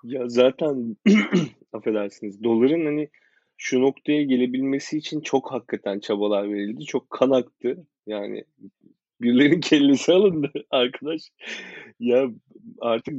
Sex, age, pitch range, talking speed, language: male, 30-49, 115-155 Hz, 100 wpm, Turkish